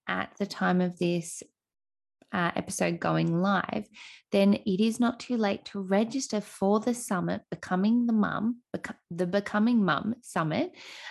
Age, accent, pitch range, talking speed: 20-39, Australian, 175-215 Hz, 145 wpm